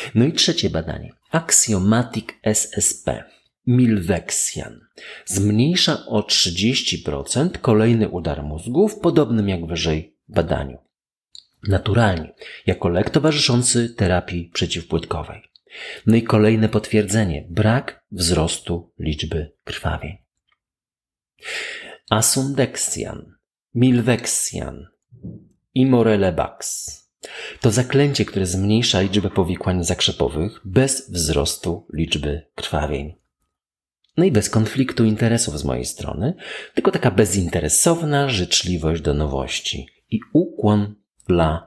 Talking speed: 90 wpm